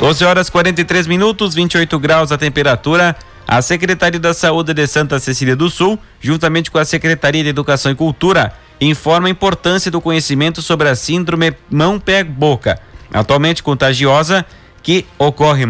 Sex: male